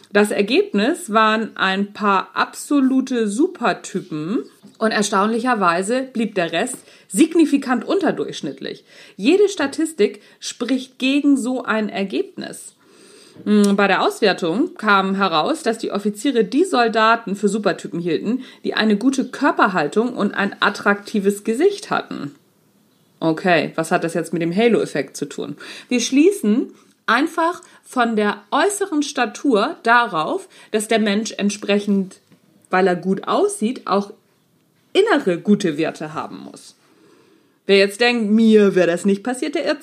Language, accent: German, German